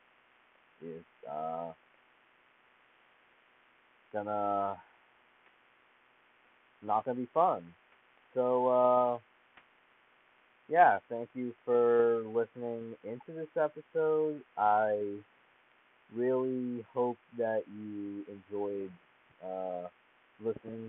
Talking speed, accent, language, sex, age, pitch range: 70 wpm, American, English, male, 30-49, 100-120 Hz